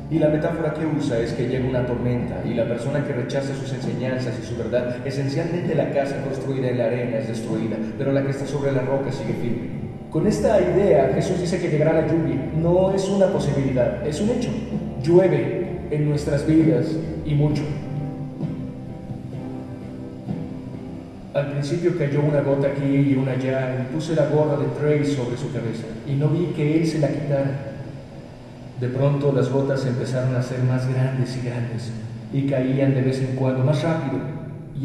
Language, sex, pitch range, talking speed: Spanish, male, 130-160 Hz, 180 wpm